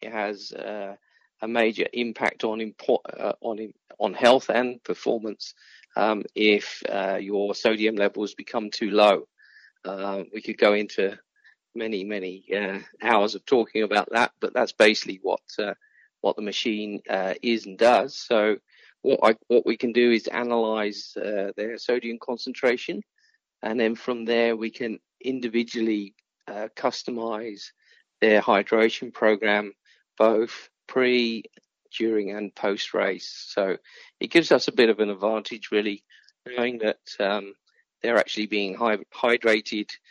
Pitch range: 105-120 Hz